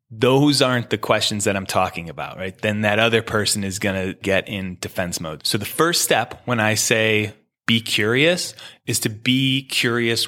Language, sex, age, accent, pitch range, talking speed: English, male, 20-39, American, 100-120 Hz, 195 wpm